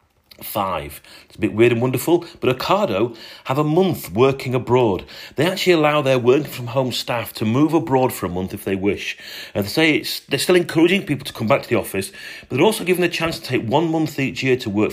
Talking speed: 235 wpm